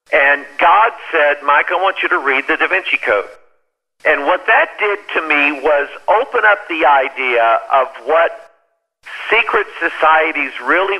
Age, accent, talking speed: 50-69, American, 160 wpm